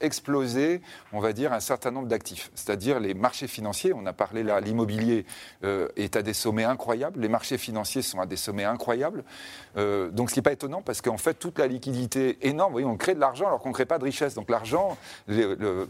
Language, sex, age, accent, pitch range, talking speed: French, male, 40-59, French, 110-135 Hz, 235 wpm